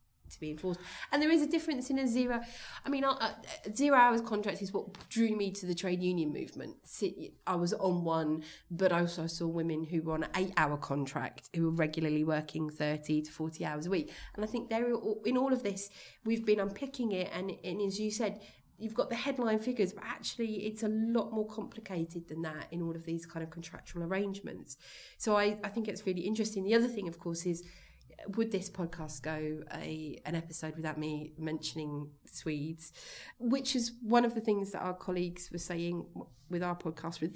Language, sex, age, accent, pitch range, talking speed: English, female, 30-49, British, 160-210 Hz, 205 wpm